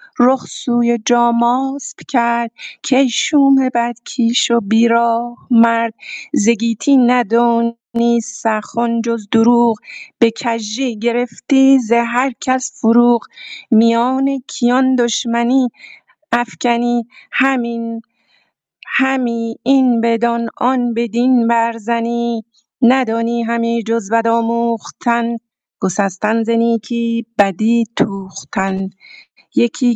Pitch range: 225-245 Hz